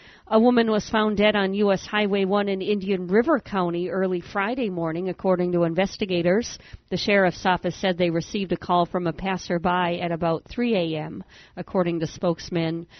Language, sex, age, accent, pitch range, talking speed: English, female, 50-69, American, 170-195 Hz, 170 wpm